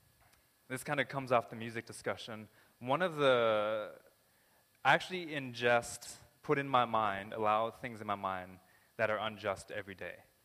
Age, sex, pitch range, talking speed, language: 20-39, male, 100-125 Hz, 160 wpm, English